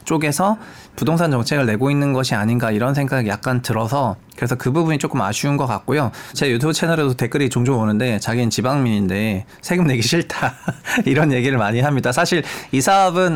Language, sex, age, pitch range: Korean, male, 20-39, 115-155 Hz